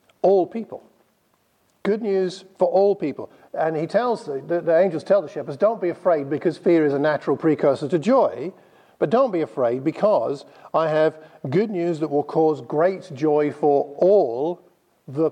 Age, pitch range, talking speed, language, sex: 50-69, 150-195 Hz, 175 wpm, English, male